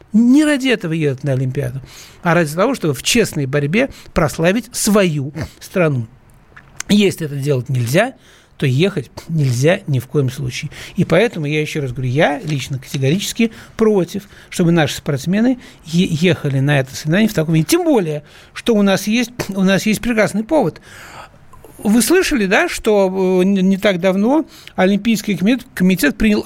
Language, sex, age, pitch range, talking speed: Russian, male, 60-79, 165-250 Hz, 150 wpm